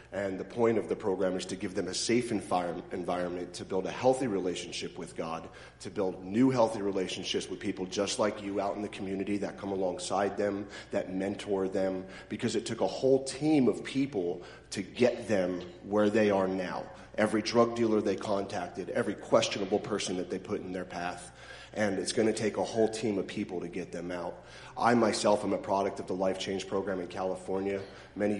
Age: 40-59